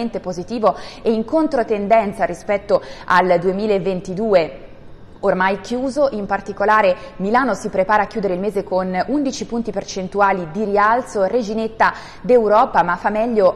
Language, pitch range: Italian, 185-230 Hz